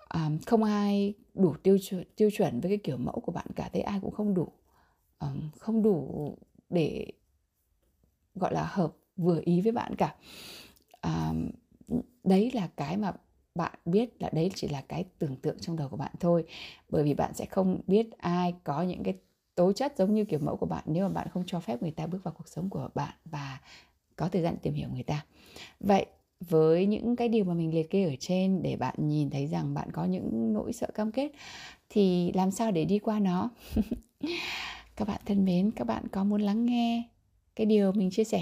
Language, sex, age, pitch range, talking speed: Vietnamese, female, 20-39, 140-205 Hz, 210 wpm